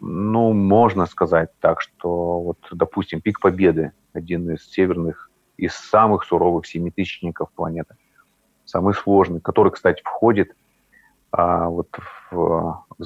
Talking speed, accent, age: 120 wpm, native, 30-49